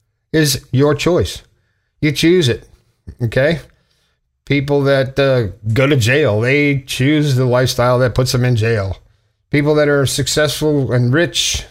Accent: American